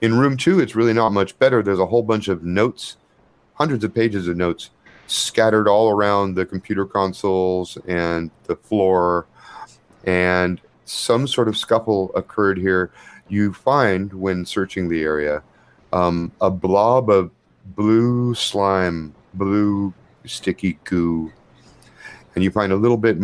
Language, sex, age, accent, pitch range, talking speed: English, male, 40-59, American, 90-110 Hz, 145 wpm